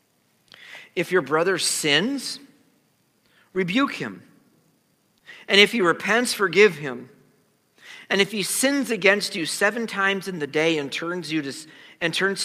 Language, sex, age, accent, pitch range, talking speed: English, male, 50-69, American, 130-195 Hz, 140 wpm